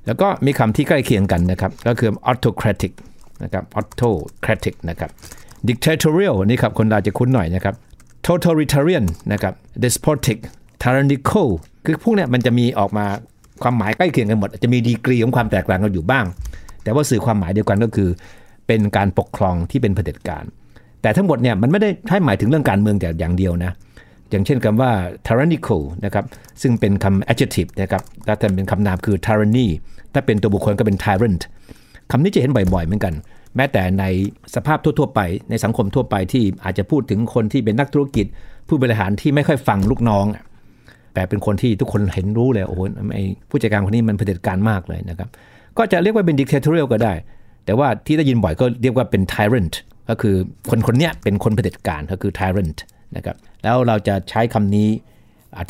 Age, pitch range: 60-79, 100-125 Hz